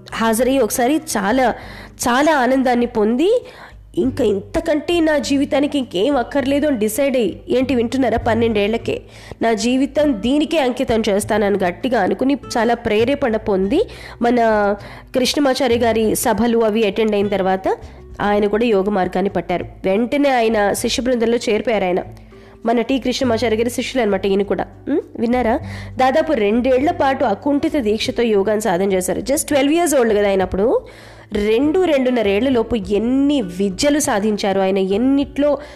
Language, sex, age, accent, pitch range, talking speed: Telugu, female, 20-39, native, 205-265 Hz, 130 wpm